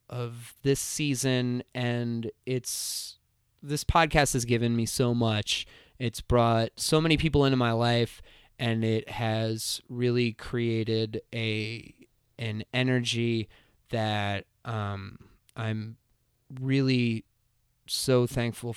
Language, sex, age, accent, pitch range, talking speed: English, male, 20-39, American, 110-125 Hz, 110 wpm